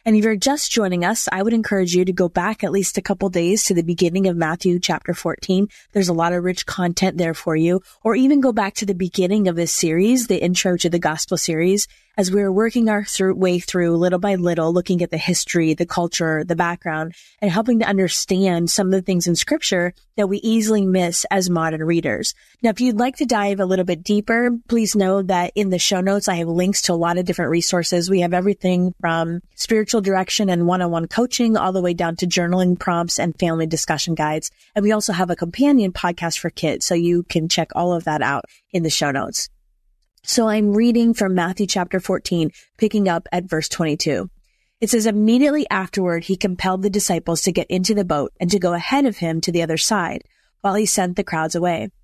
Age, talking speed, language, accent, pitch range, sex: 30-49, 220 wpm, English, American, 170-205 Hz, female